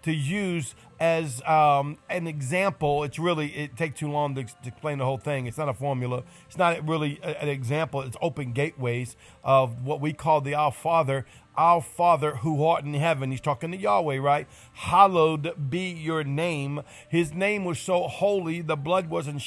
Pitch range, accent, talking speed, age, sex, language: 140-170 Hz, American, 185 wpm, 50-69, male, English